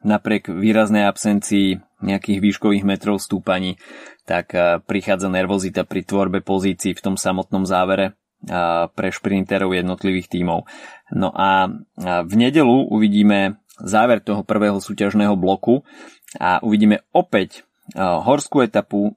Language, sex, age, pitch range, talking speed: Slovak, male, 20-39, 95-110 Hz, 115 wpm